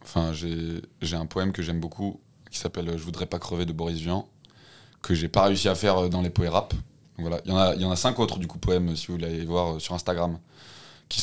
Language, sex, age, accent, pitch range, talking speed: French, male, 20-39, French, 90-115 Hz, 260 wpm